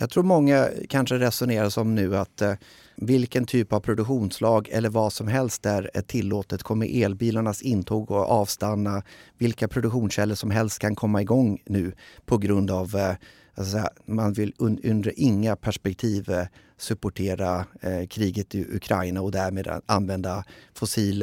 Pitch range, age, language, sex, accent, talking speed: 95-115 Hz, 30-49, Swedish, male, native, 145 wpm